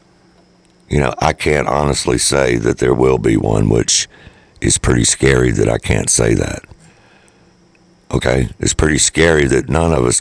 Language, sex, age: English, male, 60-79